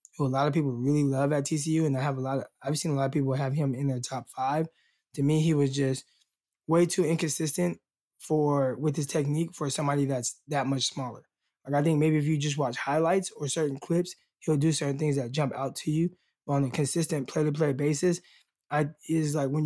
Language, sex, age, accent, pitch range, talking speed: English, male, 20-39, American, 135-155 Hz, 230 wpm